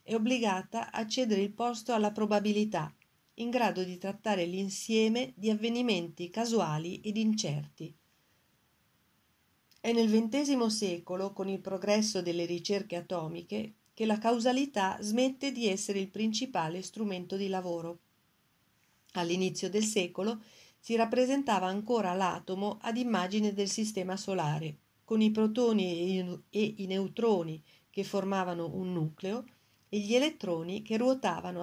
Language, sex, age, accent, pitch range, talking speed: Italian, female, 50-69, native, 175-225 Hz, 125 wpm